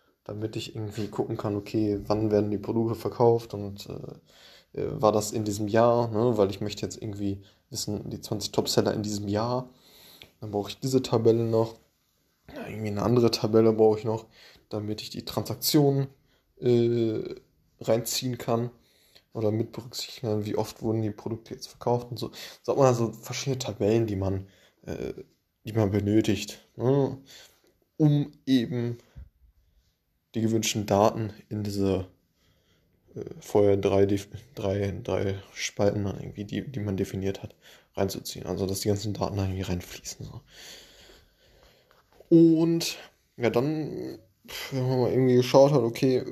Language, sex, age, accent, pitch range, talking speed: German, male, 20-39, German, 105-120 Hz, 150 wpm